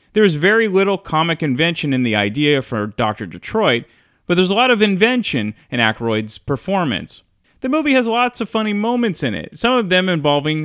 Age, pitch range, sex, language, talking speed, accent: 30-49, 135-200 Hz, male, English, 185 wpm, American